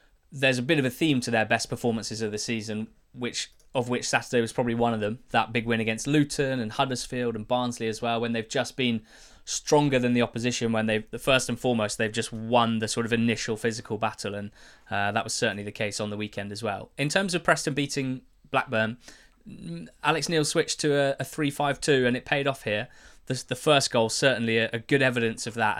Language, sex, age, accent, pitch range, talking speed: English, male, 20-39, British, 110-130 Hz, 225 wpm